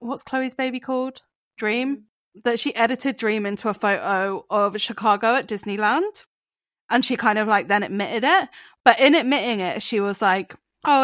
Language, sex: English, female